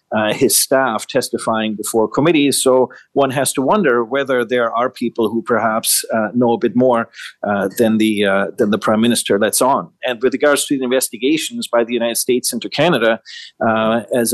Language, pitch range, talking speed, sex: English, 110-130 Hz, 195 wpm, male